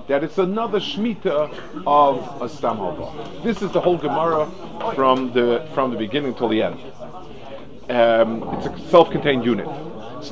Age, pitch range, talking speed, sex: 50-69, 125-175 Hz, 150 wpm, male